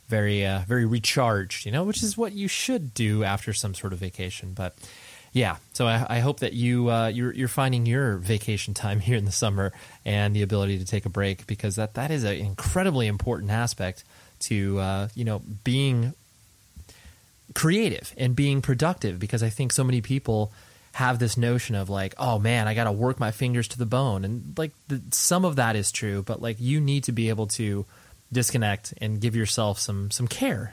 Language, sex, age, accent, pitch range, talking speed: English, male, 20-39, American, 105-130 Hz, 205 wpm